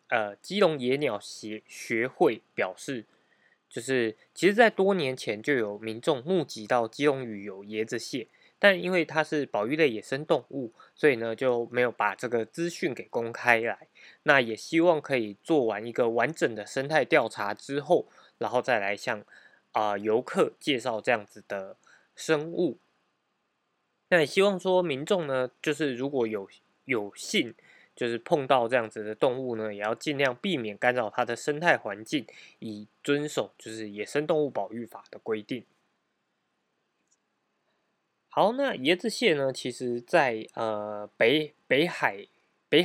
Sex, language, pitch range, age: male, Chinese, 110-155 Hz, 20-39